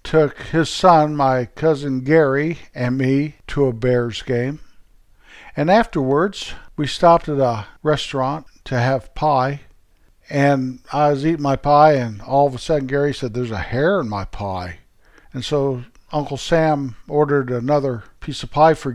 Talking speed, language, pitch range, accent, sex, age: 160 wpm, English, 130-160 Hz, American, male, 50-69